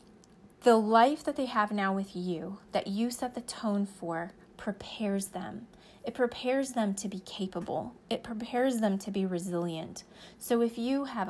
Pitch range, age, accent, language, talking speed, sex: 190-230 Hz, 30-49, American, English, 170 wpm, female